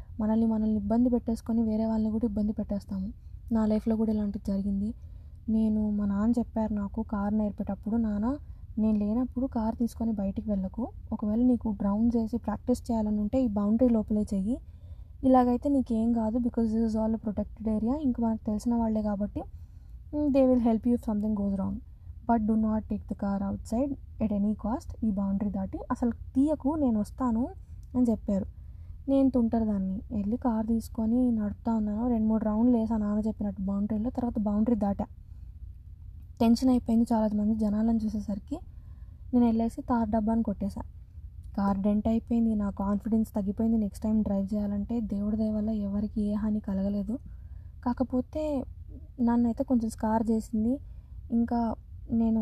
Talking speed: 150 wpm